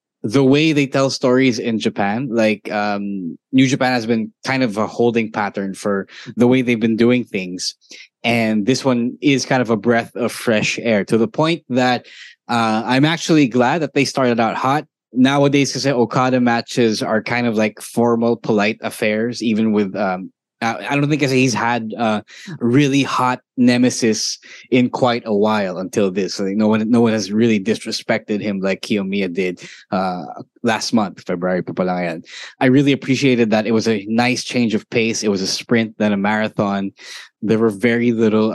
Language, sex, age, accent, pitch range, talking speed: English, male, 20-39, Filipino, 105-125 Hz, 180 wpm